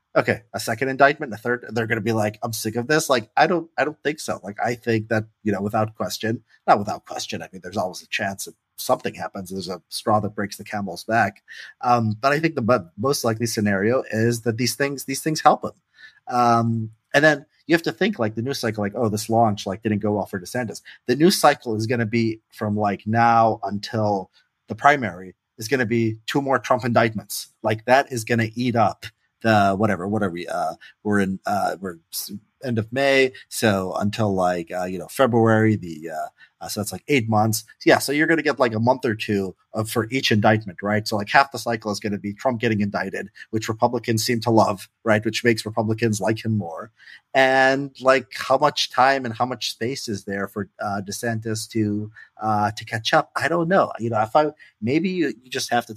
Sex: male